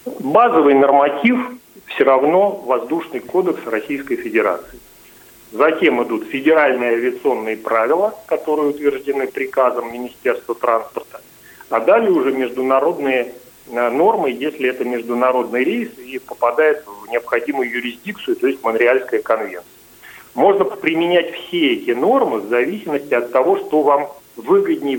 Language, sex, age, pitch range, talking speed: Russian, male, 40-59, 120-205 Hz, 115 wpm